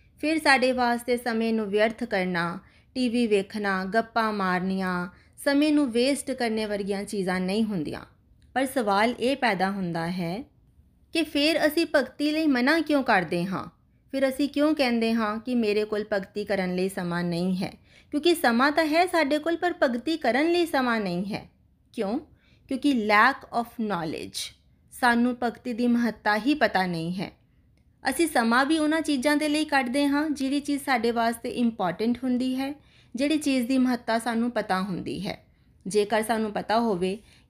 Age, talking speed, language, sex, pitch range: 30-49, 145 wpm, Punjabi, female, 210-270 Hz